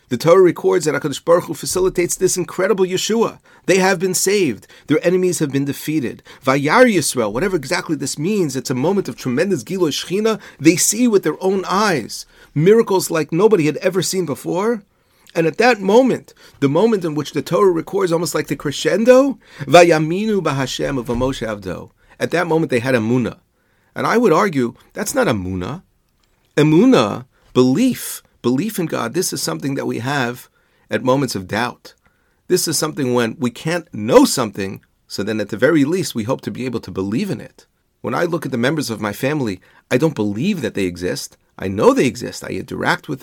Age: 40-59